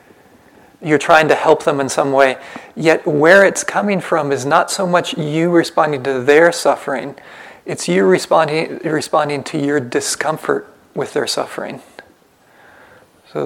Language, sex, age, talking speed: English, male, 30-49, 145 wpm